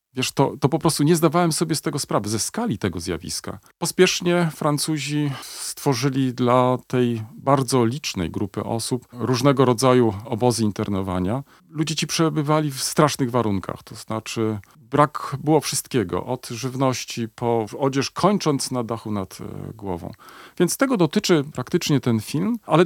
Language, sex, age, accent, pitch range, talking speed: Polish, male, 40-59, native, 120-155 Hz, 145 wpm